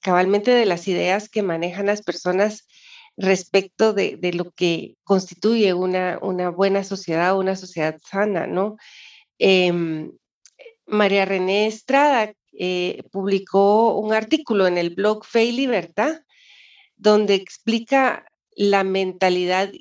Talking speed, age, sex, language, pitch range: 120 wpm, 40-59, female, Spanish, 185-230 Hz